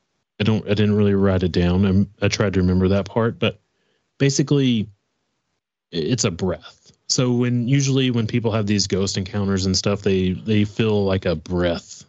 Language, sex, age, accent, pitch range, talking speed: English, male, 30-49, American, 95-115 Hz, 180 wpm